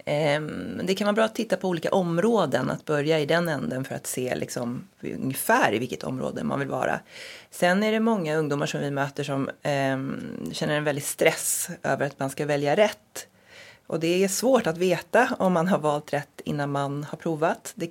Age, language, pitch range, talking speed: 30-49, Swedish, 145-175 Hz, 205 wpm